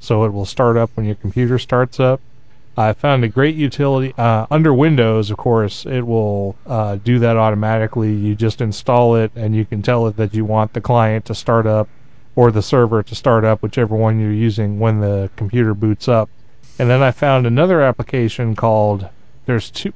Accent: American